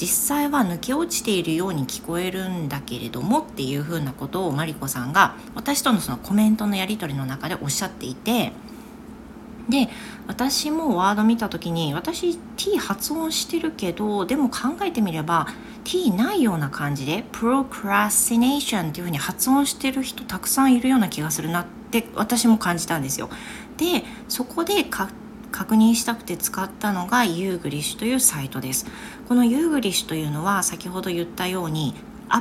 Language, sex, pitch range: Japanese, female, 165-235 Hz